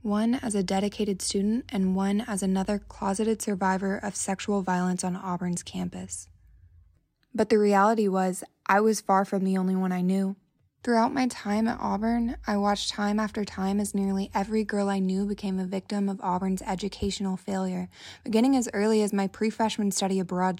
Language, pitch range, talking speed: English, 190-215 Hz, 180 wpm